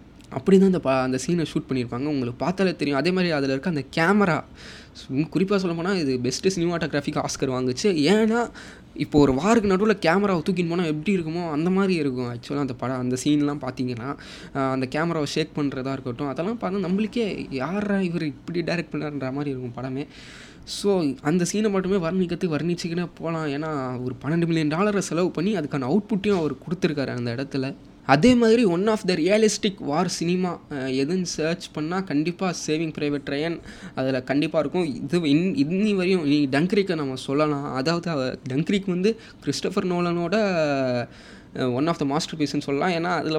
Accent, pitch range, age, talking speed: native, 140-180 Hz, 20-39, 165 wpm